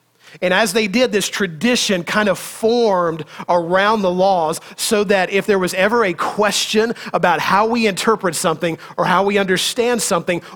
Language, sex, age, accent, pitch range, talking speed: English, male, 40-59, American, 170-210 Hz, 170 wpm